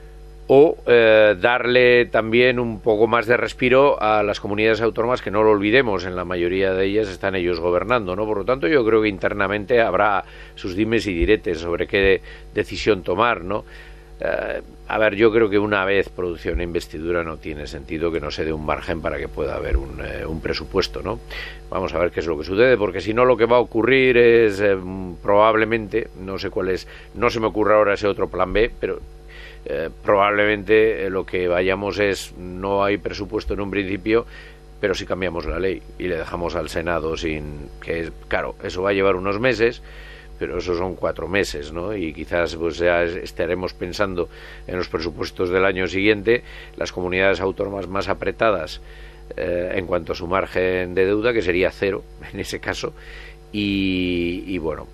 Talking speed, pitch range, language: 195 wpm, 90-110 Hz, Spanish